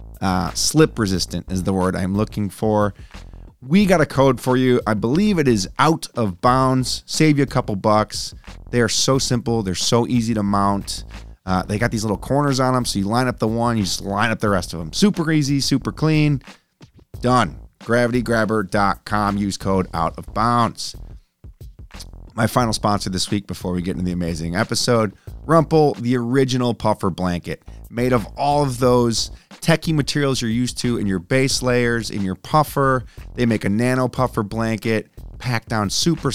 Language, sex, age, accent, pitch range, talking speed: English, male, 30-49, American, 100-130 Hz, 185 wpm